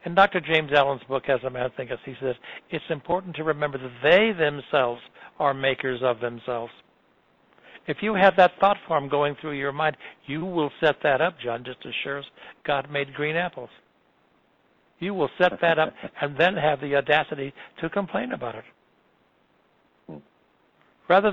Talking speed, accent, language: 170 wpm, American, English